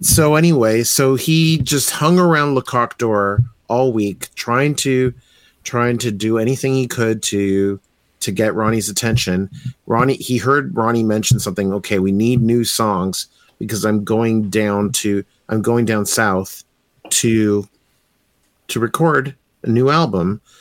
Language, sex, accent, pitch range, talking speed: English, male, American, 100-125 Hz, 145 wpm